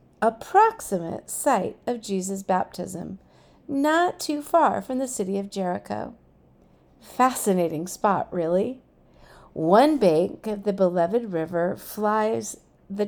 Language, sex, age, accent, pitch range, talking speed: English, female, 50-69, American, 185-265 Hz, 110 wpm